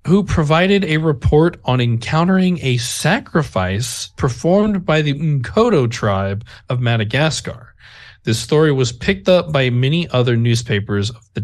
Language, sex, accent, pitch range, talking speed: English, male, American, 115-165 Hz, 135 wpm